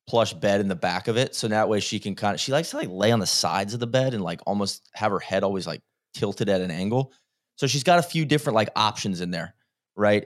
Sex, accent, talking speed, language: male, American, 280 wpm, English